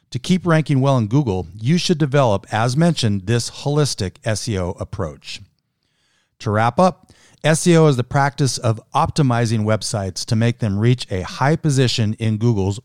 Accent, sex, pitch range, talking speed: American, male, 100-135 Hz, 160 wpm